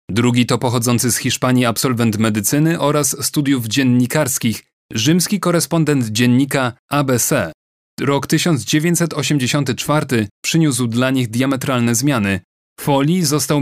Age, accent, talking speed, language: 30-49, native, 100 wpm, Polish